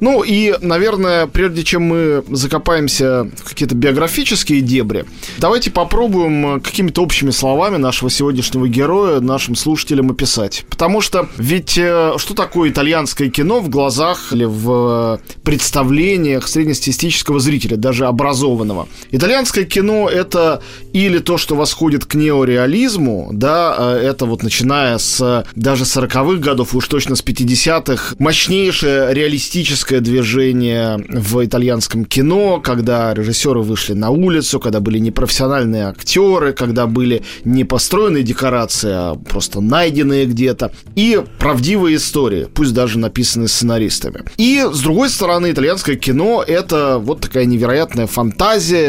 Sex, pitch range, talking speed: male, 125-165 Hz, 125 wpm